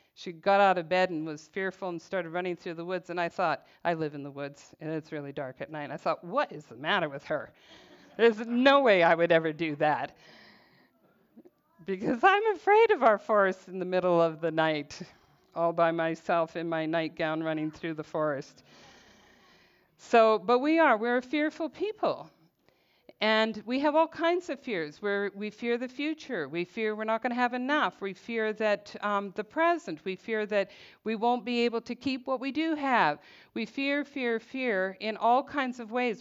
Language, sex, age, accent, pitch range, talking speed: English, female, 50-69, American, 170-245 Hz, 200 wpm